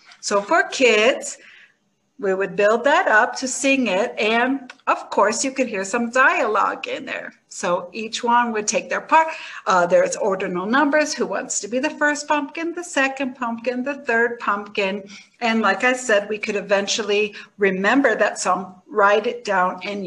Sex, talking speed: female, 175 wpm